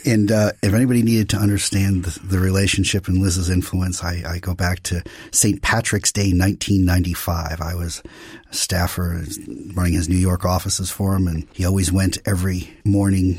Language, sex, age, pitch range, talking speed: English, male, 40-59, 95-110 Hz, 175 wpm